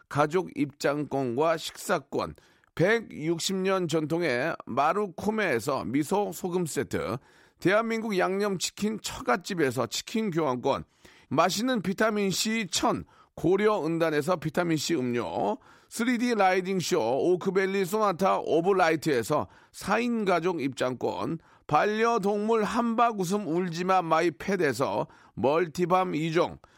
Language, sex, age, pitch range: Korean, male, 40-59, 165-220 Hz